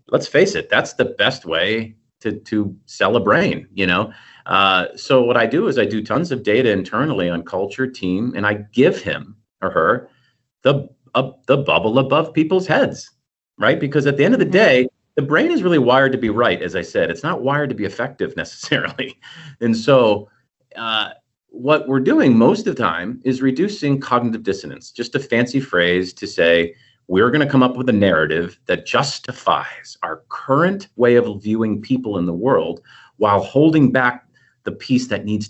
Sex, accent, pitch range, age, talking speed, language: male, American, 95-135 Hz, 40-59, 190 wpm, English